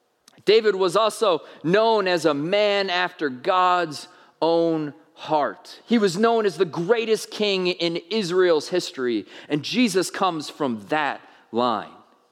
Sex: male